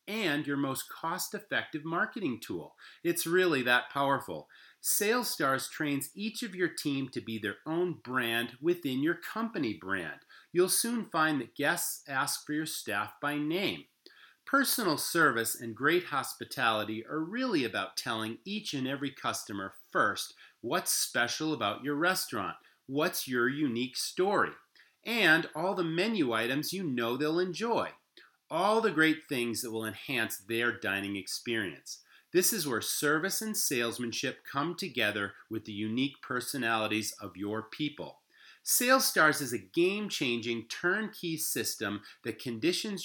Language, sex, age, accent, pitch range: Japanese, male, 40-59, American, 115-180 Hz